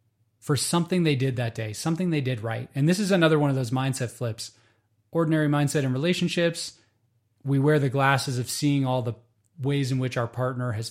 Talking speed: 205 wpm